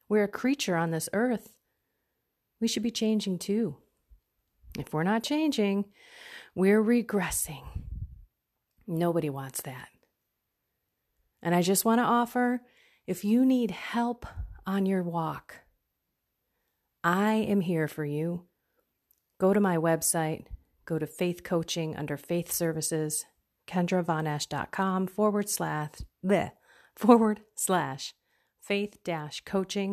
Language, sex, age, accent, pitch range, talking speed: English, female, 30-49, American, 170-220 Hz, 110 wpm